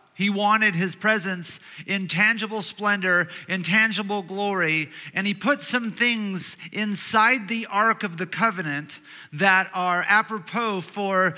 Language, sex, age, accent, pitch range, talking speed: English, male, 40-59, American, 185-230 Hz, 130 wpm